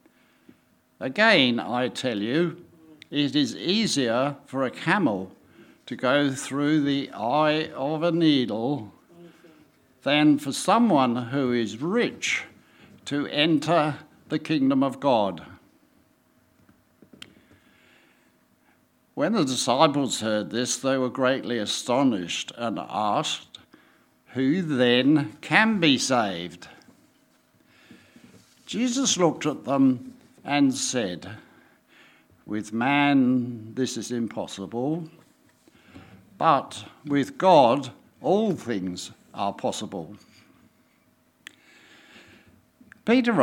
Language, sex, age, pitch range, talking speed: English, male, 60-79, 125-165 Hz, 90 wpm